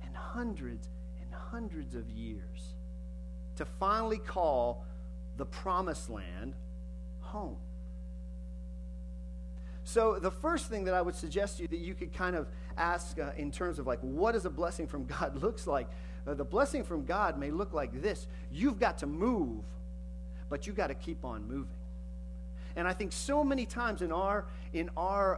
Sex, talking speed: male, 170 wpm